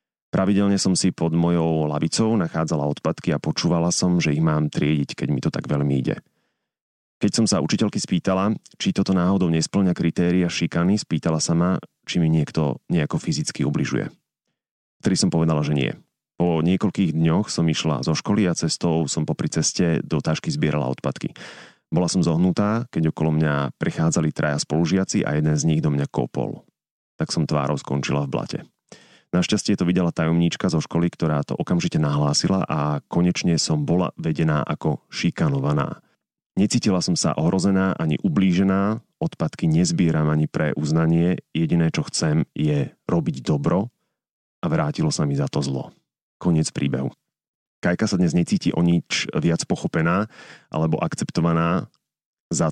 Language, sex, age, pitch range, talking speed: Slovak, male, 30-49, 75-95 Hz, 155 wpm